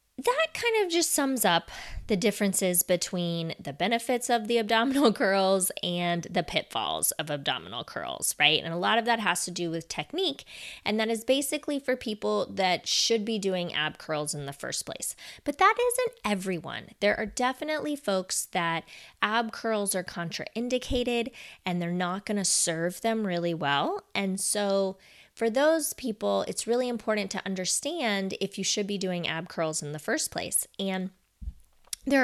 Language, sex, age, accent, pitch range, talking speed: English, female, 20-39, American, 165-230 Hz, 175 wpm